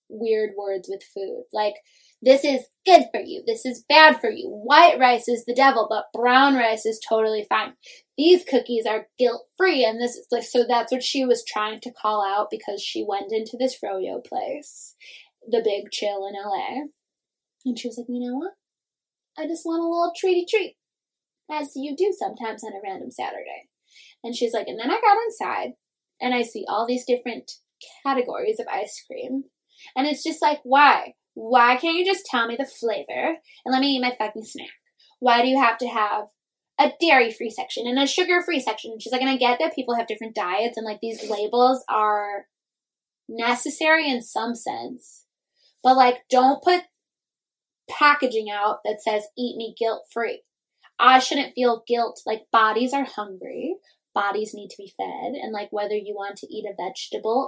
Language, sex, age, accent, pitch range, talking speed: English, female, 10-29, American, 220-295 Hz, 190 wpm